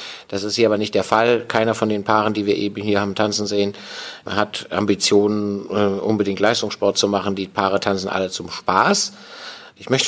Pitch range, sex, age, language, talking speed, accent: 100-115 Hz, male, 50-69, German, 190 wpm, German